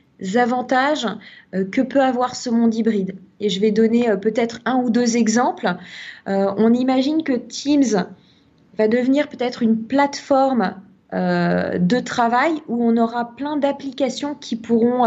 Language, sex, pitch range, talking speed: French, female, 220-260 Hz, 150 wpm